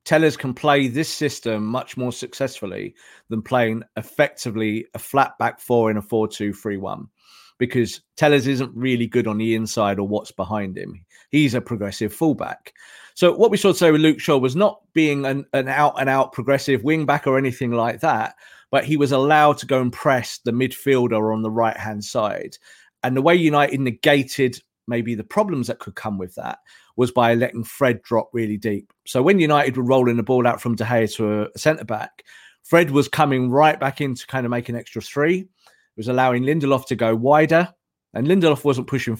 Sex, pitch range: male, 115-145 Hz